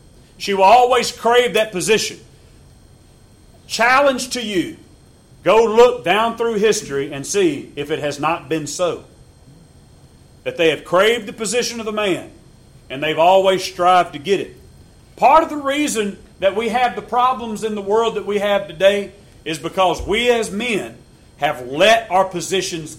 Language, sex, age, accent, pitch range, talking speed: English, male, 40-59, American, 200-260 Hz, 165 wpm